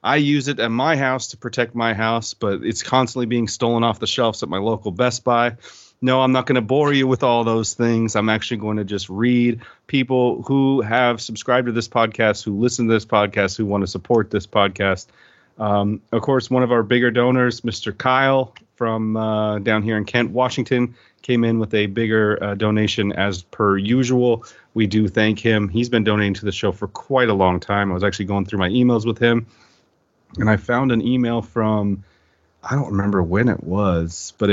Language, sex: English, male